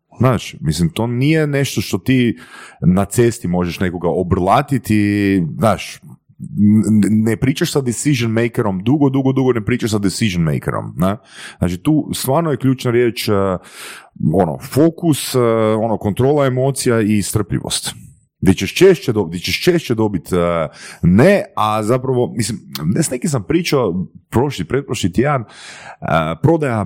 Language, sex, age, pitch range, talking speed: Croatian, male, 30-49, 90-130 Hz, 125 wpm